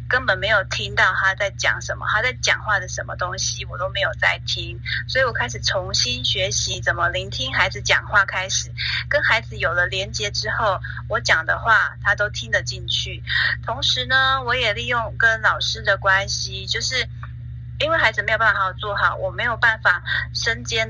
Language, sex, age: Chinese, female, 30-49